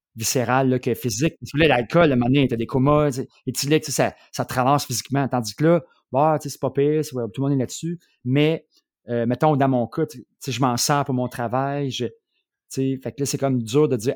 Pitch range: 115-140 Hz